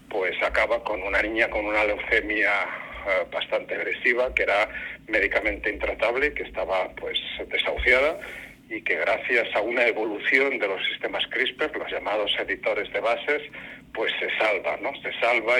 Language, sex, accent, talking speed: Spanish, male, Spanish, 150 wpm